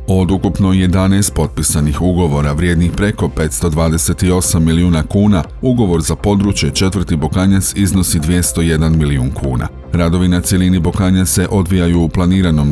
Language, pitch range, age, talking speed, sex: Croatian, 80-95 Hz, 40-59, 125 wpm, male